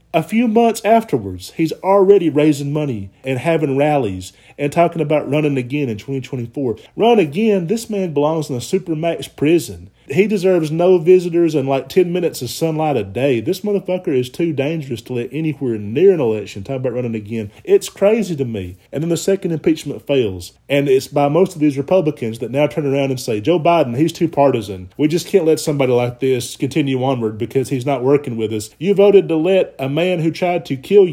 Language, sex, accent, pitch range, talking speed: English, male, American, 130-165 Hz, 205 wpm